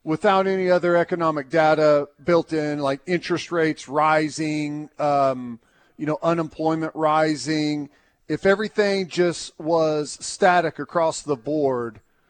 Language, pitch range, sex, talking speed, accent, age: English, 150-180 Hz, male, 115 wpm, American, 40-59